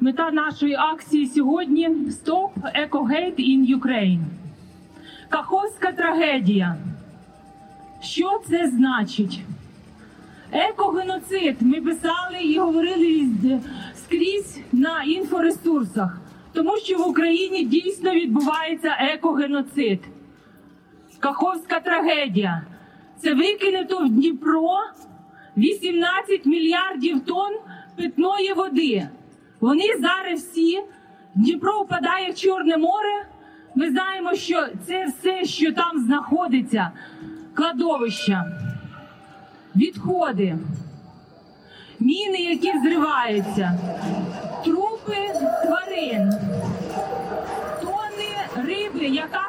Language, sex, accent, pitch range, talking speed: Ukrainian, female, native, 255-360 Hz, 80 wpm